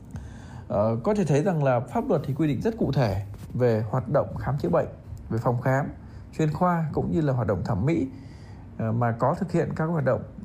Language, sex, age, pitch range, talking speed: Vietnamese, male, 20-39, 110-150 Hz, 220 wpm